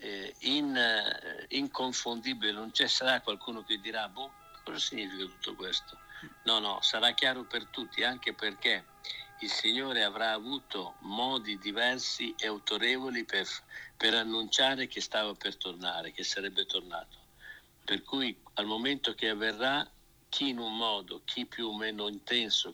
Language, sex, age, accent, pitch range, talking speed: Italian, male, 60-79, native, 105-130 Hz, 145 wpm